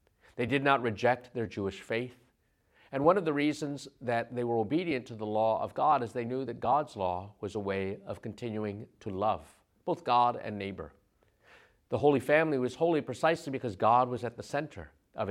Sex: male